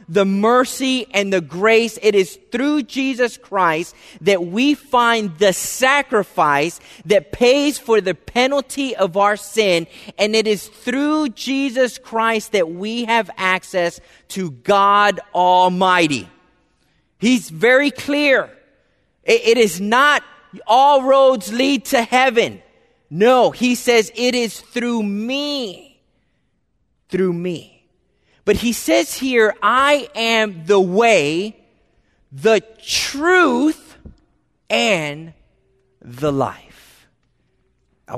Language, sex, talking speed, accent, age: English, male, 110 wpm, American, 30-49